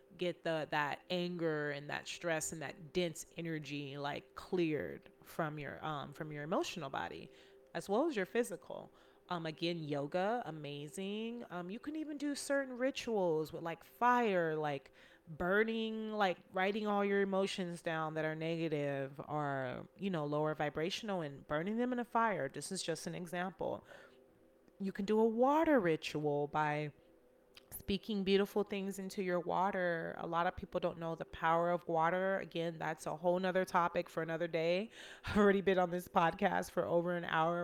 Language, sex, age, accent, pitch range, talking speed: English, female, 30-49, American, 150-195 Hz, 170 wpm